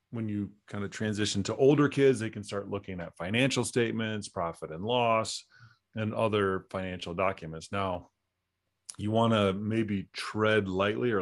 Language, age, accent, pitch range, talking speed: English, 30-49, American, 95-115 Hz, 160 wpm